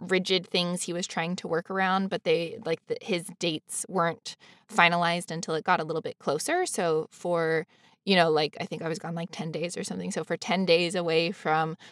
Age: 20-39